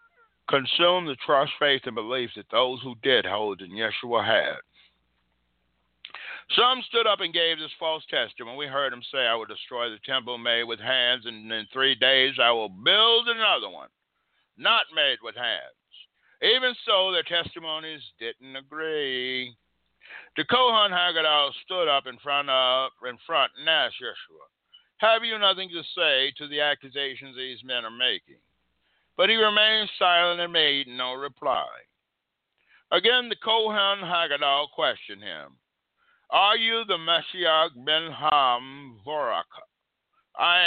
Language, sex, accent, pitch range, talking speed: English, male, American, 125-190 Hz, 145 wpm